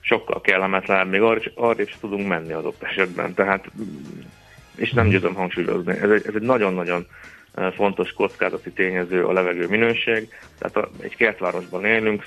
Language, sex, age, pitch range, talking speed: Hungarian, male, 30-49, 95-105 Hz, 140 wpm